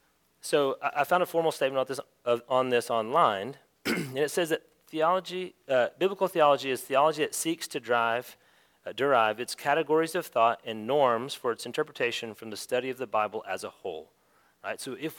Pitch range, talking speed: 105-155 Hz, 195 wpm